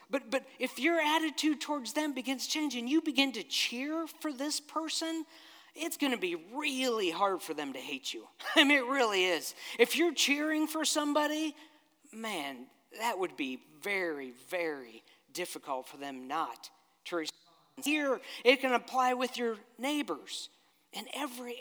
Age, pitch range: 40-59, 175-275 Hz